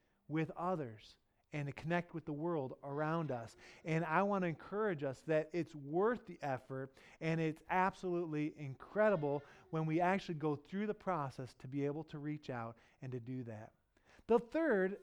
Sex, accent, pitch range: male, American, 150-215 Hz